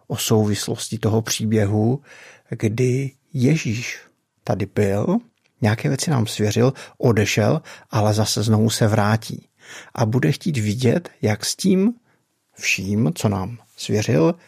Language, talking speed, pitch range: Czech, 120 wpm, 105-130 Hz